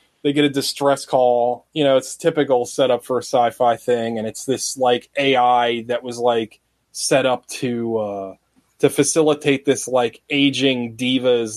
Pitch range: 120-145 Hz